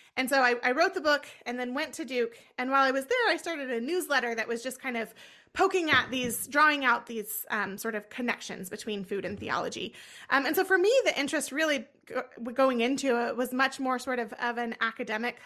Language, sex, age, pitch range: English, female, 20-39, 225-275 Hz